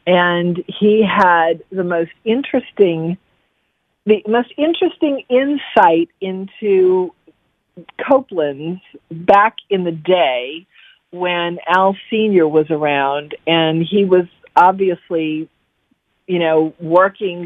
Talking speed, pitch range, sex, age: 95 wpm, 160-200 Hz, female, 50-69